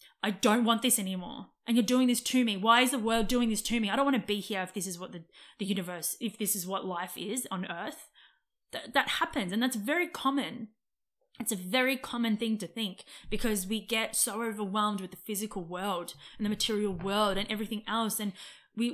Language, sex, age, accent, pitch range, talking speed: English, female, 20-39, Australian, 200-250 Hz, 230 wpm